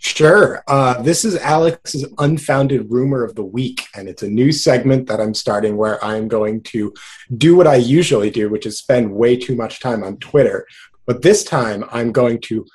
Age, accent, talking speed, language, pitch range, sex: 30-49, American, 200 wpm, English, 125-155 Hz, male